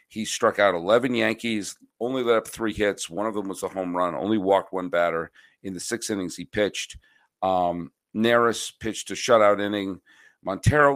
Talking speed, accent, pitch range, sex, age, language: 185 wpm, American, 95-125 Hz, male, 50-69, English